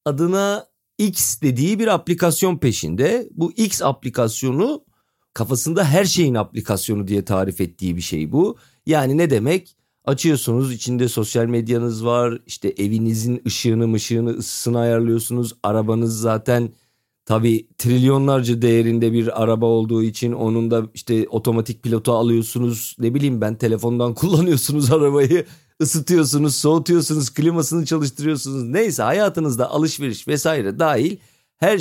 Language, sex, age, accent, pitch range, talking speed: Turkish, male, 40-59, native, 115-155 Hz, 120 wpm